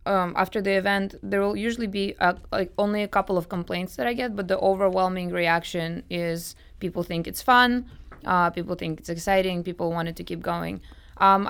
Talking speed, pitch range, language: 200 wpm, 170-195 Hz, English